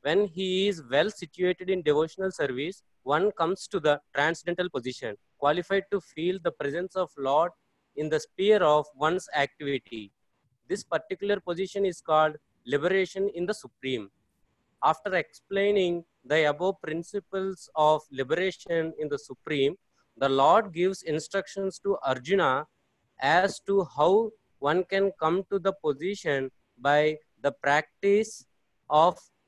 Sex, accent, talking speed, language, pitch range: male, Indian, 130 wpm, English, 145-195 Hz